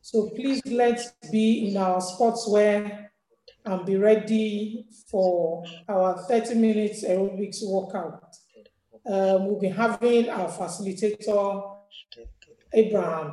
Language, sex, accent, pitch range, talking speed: English, male, Nigerian, 185-220 Hz, 105 wpm